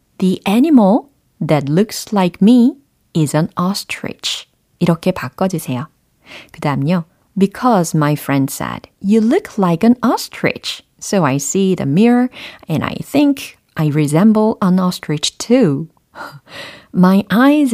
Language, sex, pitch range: Korean, female, 155-215 Hz